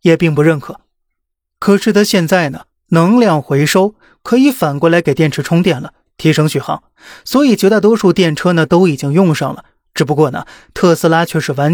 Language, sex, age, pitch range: Chinese, male, 20-39, 155-200 Hz